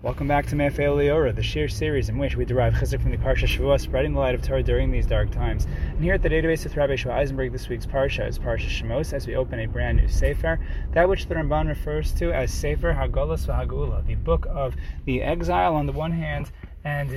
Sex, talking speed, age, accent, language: male, 240 wpm, 30-49, American, English